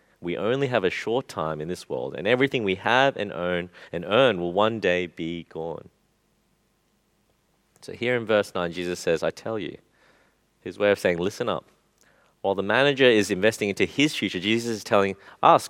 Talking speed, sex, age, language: 190 wpm, male, 30-49, English